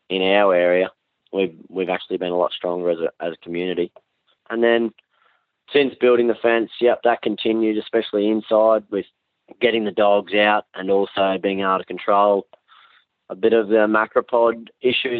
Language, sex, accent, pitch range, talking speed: English, male, Australian, 95-115 Hz, 170 wpm